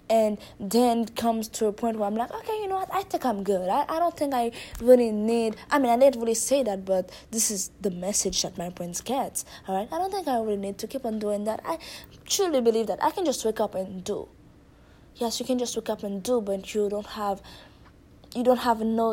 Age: 20-39